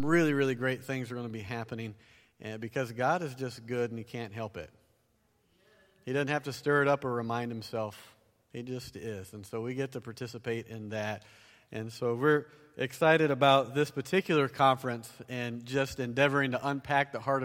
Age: 40-59